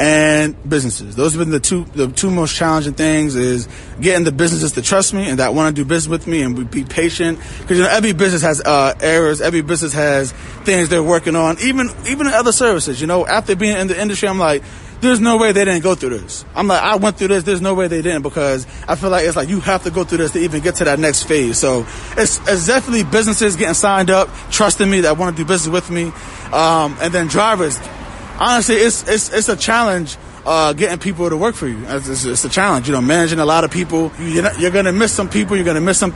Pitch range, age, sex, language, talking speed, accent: 155-200 Hz, 20-39, male, English, 255 wpm, American